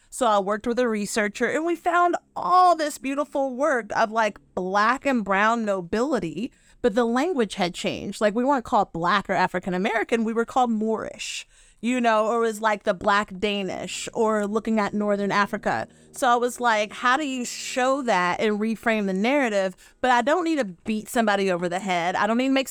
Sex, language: female, English